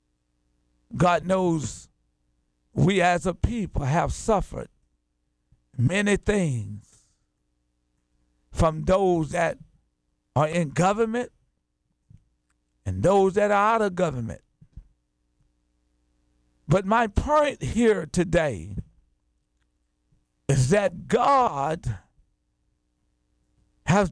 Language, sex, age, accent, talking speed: English, male, 50-69, American, 80 wpm